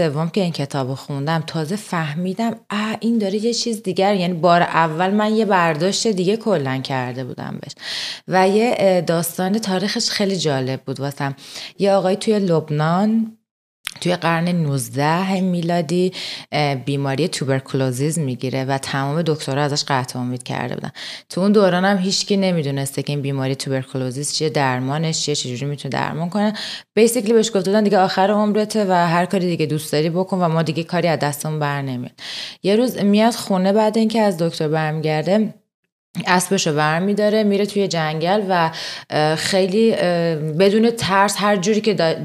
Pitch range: 150-200 Hz